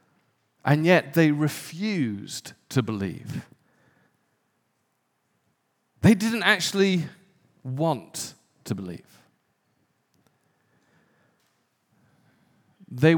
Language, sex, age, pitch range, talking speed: English, male, 40-59, 140-185 Hz, 60 wpm